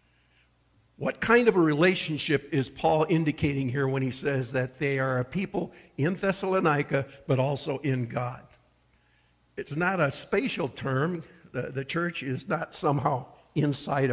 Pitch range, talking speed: 135-180 Hz, 145 wpm